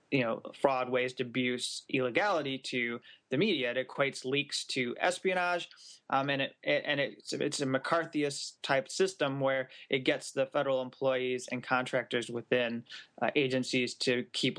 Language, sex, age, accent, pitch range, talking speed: English, male, 20-39, American, 125-145 Hz, 150 wpm